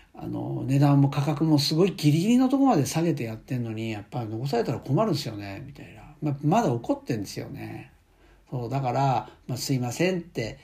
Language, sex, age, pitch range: Japanese, male, 60-79, 115-150 Hz